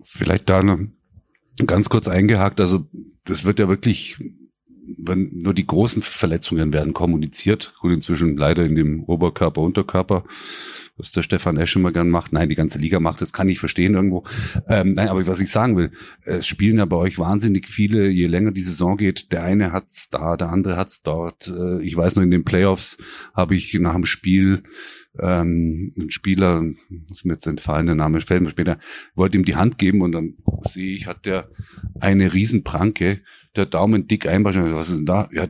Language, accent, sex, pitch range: German, German, male, 85-100 Hz